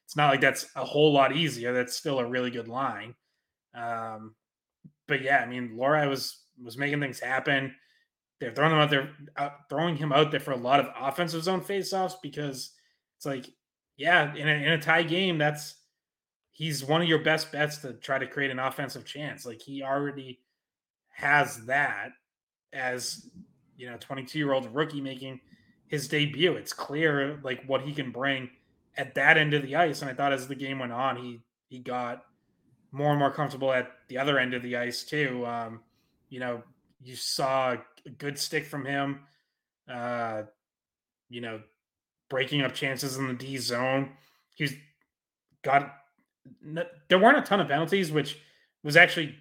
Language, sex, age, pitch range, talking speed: English, male, 20-39, 130-155 Hz, 180 wpm